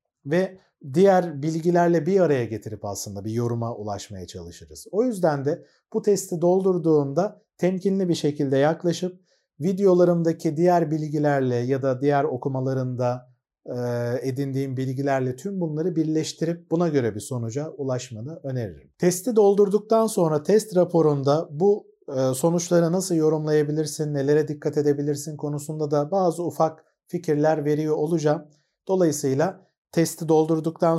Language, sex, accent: Turkish, male, native